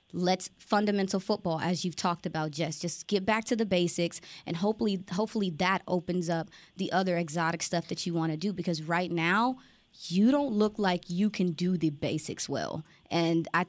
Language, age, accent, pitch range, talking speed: English, 20-39, American, 170-215 Hz, 195 wpm